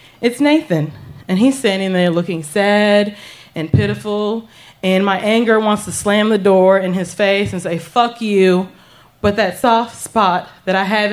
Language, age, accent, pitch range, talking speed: English, 20-39, American, 170-220 Hz, 175 wpm